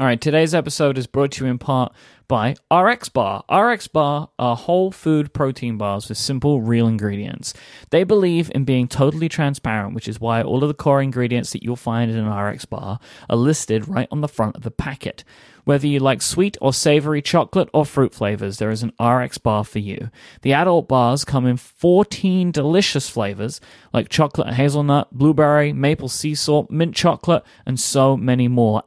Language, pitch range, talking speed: English, 120-155 Hz, 190 wpm